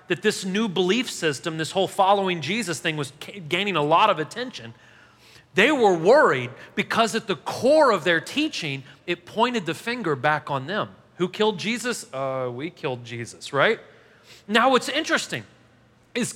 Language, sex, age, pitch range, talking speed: English, male, 30-49, 165-230 Hz, 165 wpm